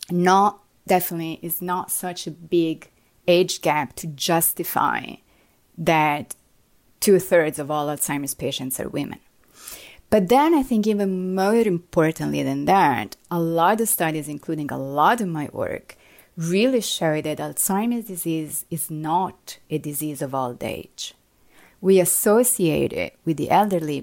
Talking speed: 140 wpm